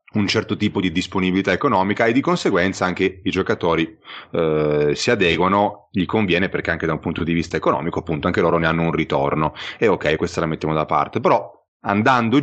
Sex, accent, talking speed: male, native, 200 wpm